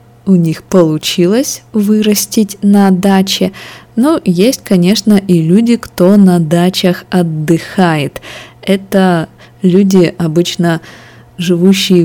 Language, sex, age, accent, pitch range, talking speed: Russian, female, 20-39, native, 165-195 Hz, 95 wpm